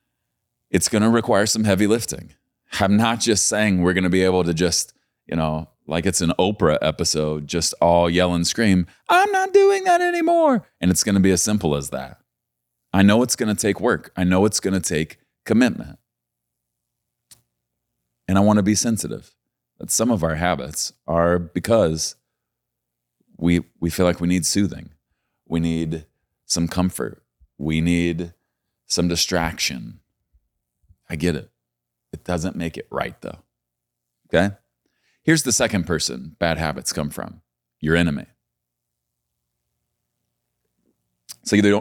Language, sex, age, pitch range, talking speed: English, male, 30-49, 70-100 Hz, 155 wpm